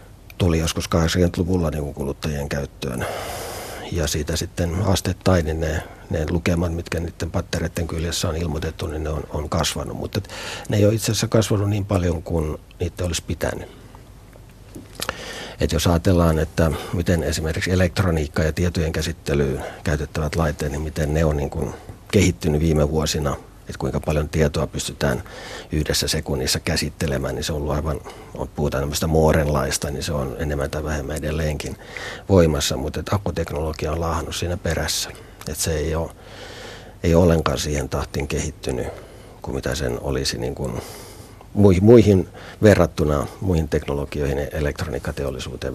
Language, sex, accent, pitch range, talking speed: Finnish, male, native, 75-90 Hz, 145 wpm